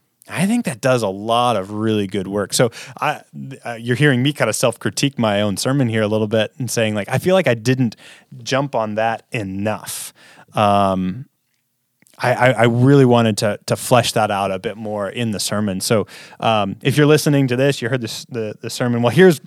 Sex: male